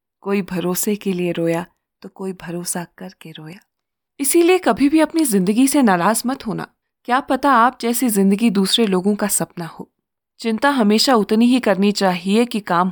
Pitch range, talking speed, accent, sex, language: 185-240 Hz, 170 wpm, native, female, Hindi